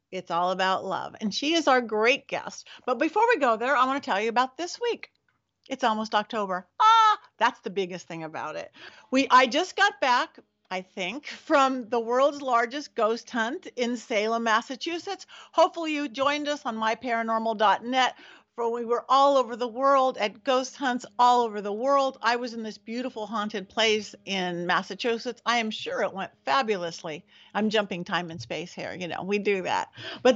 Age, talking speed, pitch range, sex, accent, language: 50-69, 190 wpm, 205-270 Hz, female, American, English